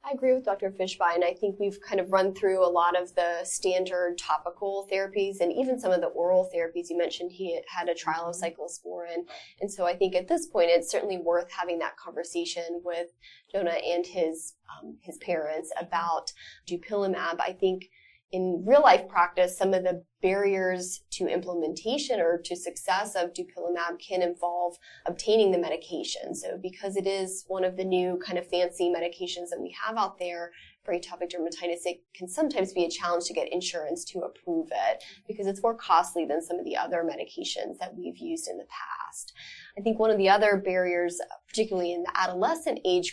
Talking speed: 190 wpm